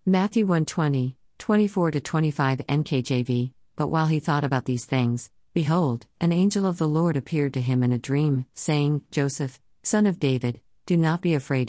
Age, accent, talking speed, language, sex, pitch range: 50-69, American, 170 wpm, English, female, 130-165 Hz